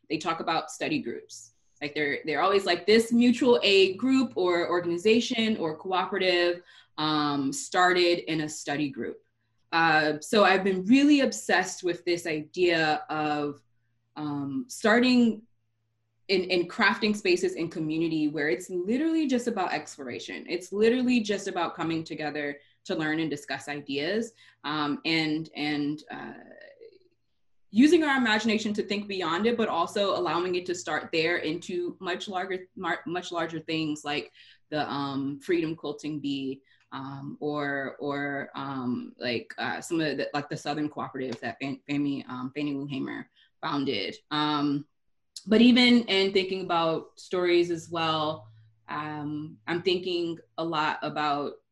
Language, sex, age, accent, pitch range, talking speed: English, female, 20-39, American, 145-190 Hz, 145 wpm